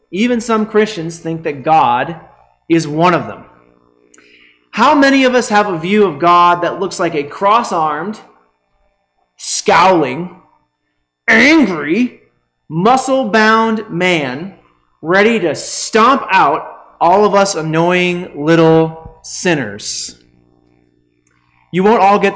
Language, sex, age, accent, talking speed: English, male, 30-49, American, 115 wpm